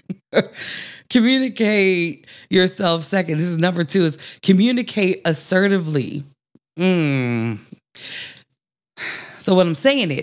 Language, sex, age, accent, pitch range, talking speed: English, female, 20-39, American, 135-180 Hz, 95 wpm